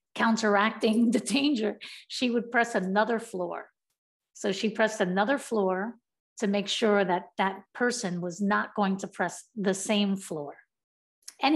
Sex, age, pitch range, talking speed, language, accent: female, 50-69, 195-230 Hz, 145 wpm, English, American